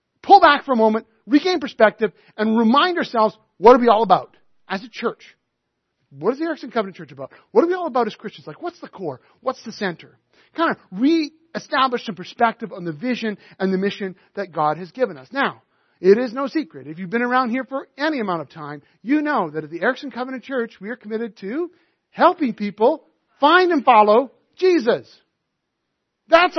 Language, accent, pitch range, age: English, American, 195-285 Hz, 40-59